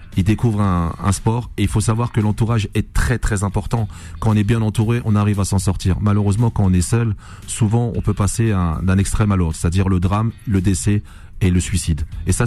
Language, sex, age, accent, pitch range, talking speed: French, male, 40-59, French, 95-115 Hz, 230 wpm